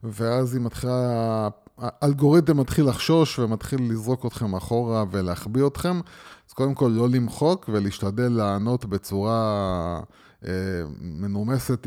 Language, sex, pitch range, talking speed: Hebrew, male, 100-135 Hz, 110 wpm